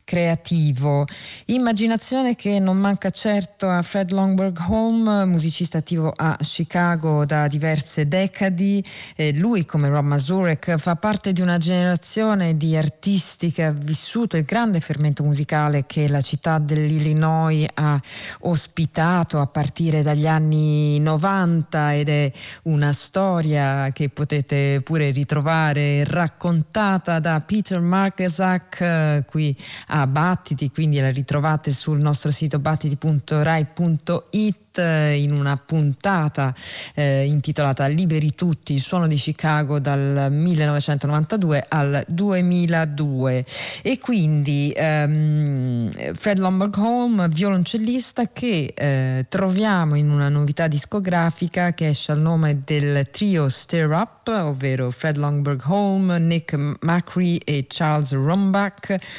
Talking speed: 115 wpm